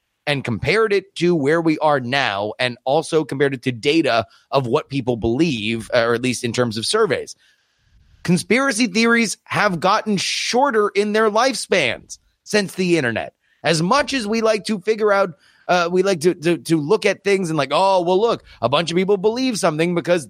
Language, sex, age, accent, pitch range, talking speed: English, male, 30-49, American, 130-190 Hz, 190 wpm